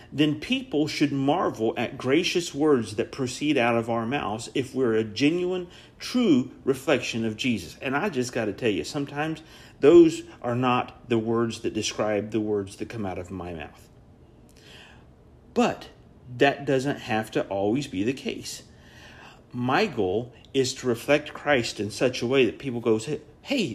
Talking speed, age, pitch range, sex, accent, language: 170 wpm, 50-69, 115-160 Hz, male, American, English